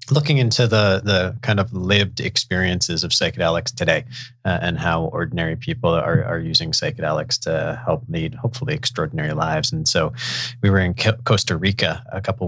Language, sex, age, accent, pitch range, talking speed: English, male, 30-49, American, 95-140 Hz, 170 wpm